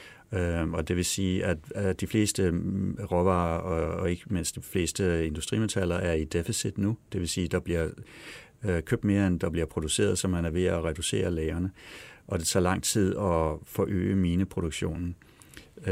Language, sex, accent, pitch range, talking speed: Danish, male, native, 85-95 Hz, 175 wpm